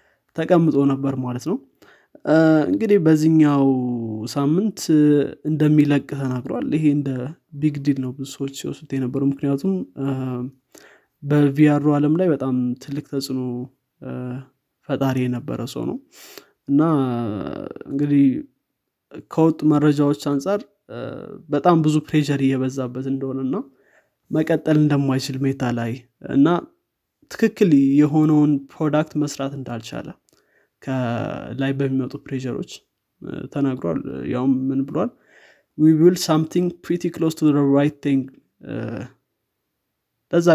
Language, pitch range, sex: Amharic, 130-150 Hz, male